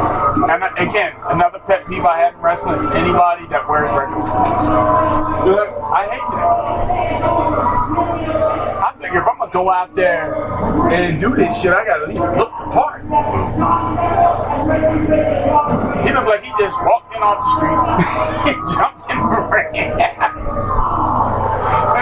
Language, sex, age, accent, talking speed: English, male, 30-49, American, 155 wpm